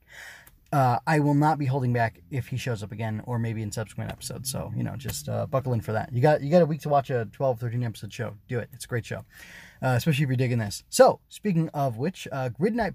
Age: 20-39